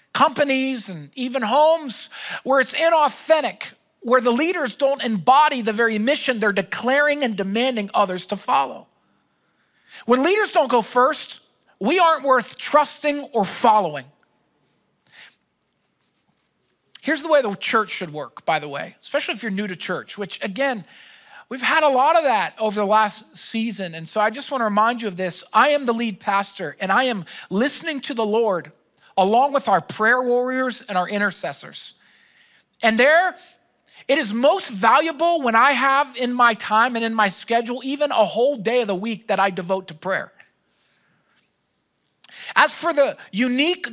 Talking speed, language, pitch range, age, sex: 165 wpm, English, 215-285 Hz, 40-59, male